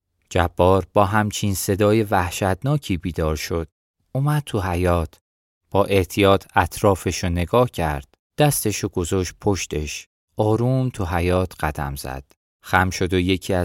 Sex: male